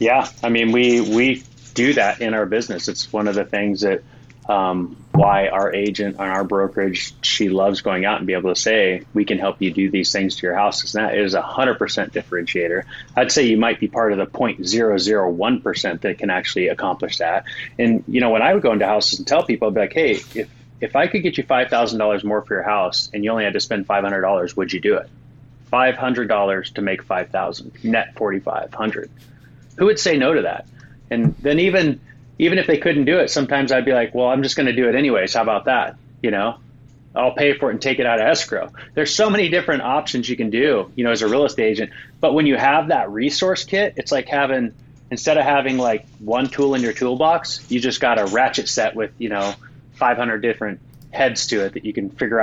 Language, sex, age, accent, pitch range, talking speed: English, male, 30-49, American, 105-135 Hz, 230 wpm